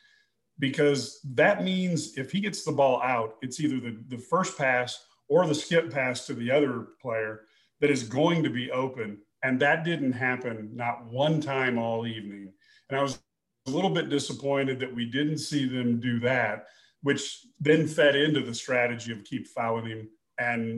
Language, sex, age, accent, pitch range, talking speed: English, male, 40-59, American, 120-145 Hz, 180 wpm